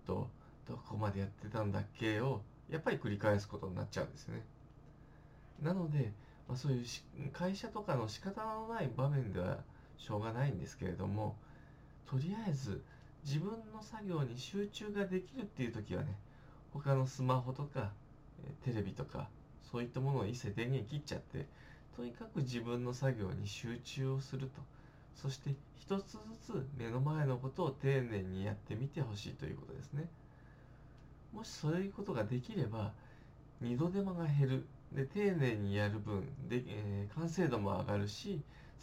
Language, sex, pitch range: Japanese, male, 120-150 Hz